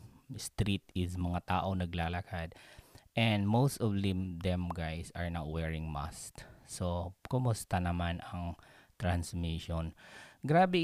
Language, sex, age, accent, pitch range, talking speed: Filipino, male, 20-39, native, 90-120 Hz, 115 wpm